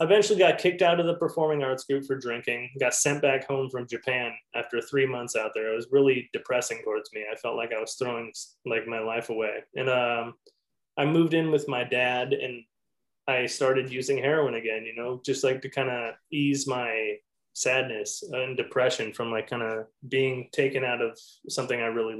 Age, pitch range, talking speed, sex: 20-39, 120-140 Hz, 205 wpm, male